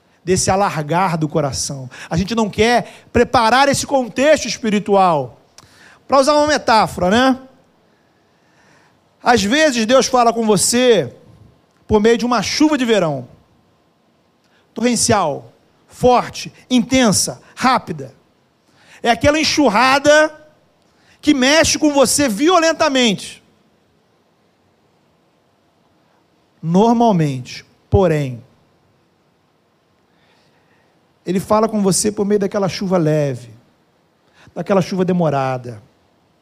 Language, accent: Portuguese, Brazilian